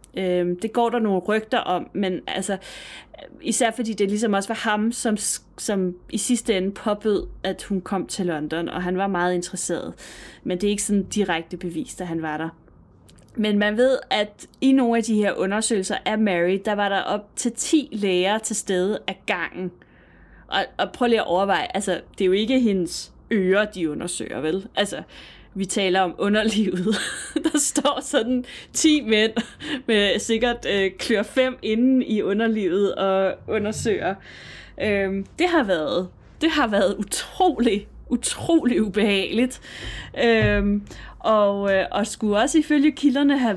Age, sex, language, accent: 20-39, female, Danish, native